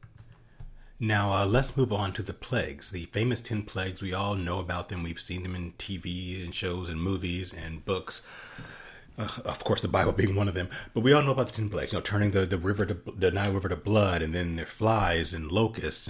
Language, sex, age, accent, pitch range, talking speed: English, male, 30-49, American, 90-115 Hz, 230 wpm